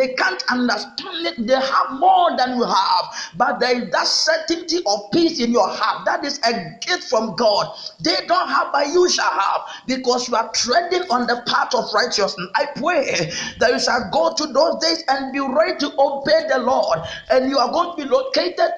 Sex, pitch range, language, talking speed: male, 225-310 Hz, English, 210 wpm